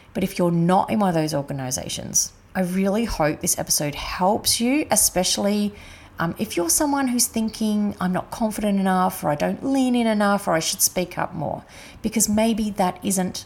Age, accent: 30-49, Australian